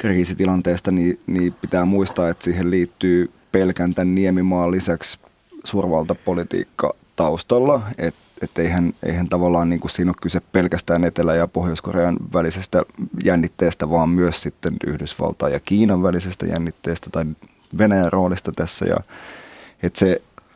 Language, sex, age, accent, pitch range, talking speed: Finnish, male, 20-39, native, 90-100 Hz, 125 wpm